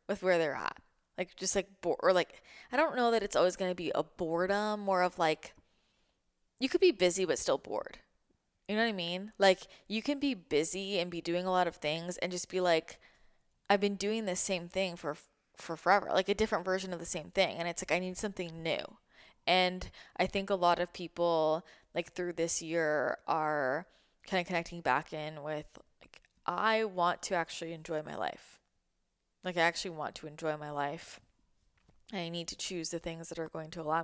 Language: English